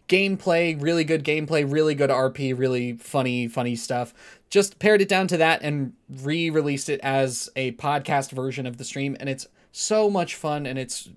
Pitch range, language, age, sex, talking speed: 135-170 Hz, English, 20-39, male, 185 wpm